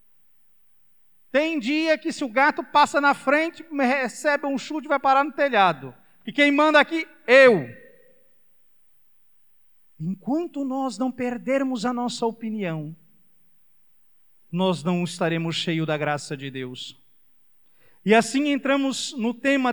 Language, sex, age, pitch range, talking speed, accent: Portuguese, male, 50-69, 205-275 Hz, 130 wpm, Brazilian